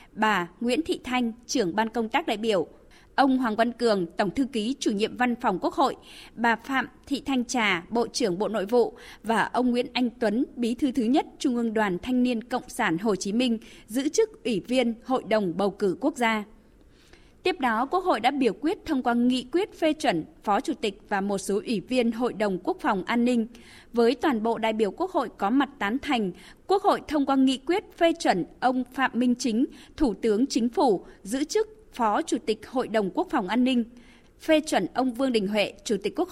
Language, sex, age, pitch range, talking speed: Vietnamese, female, 20-39, 225-285 Hz, 225 wpm